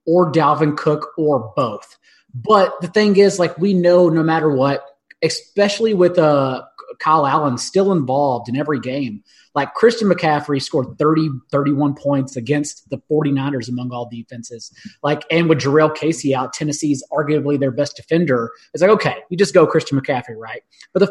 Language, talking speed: English, 170 wpm